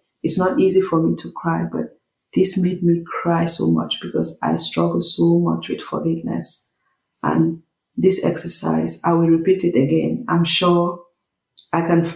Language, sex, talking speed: English, female, 165 wpm